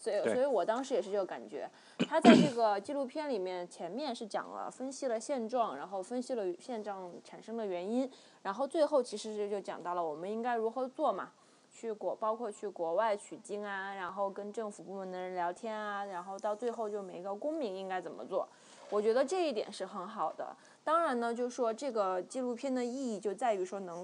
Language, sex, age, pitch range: Chinese, female, 20-39, 195-245 Hz